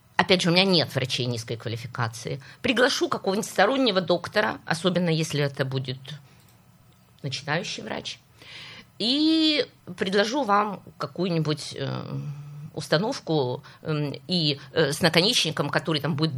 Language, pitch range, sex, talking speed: Russian, 145-190 Hz, female, 105 wpm